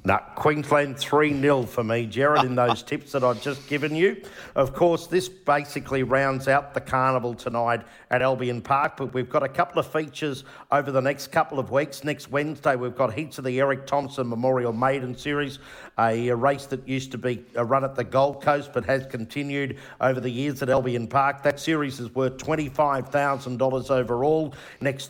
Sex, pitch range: male, 125-145 Hz